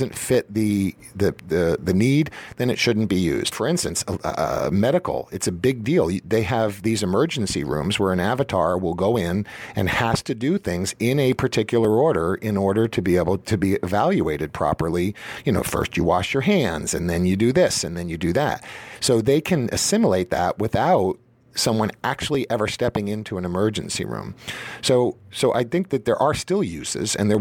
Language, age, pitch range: English, 50-69, 95-130 Hz